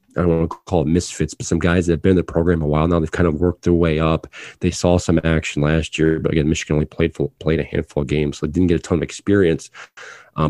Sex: male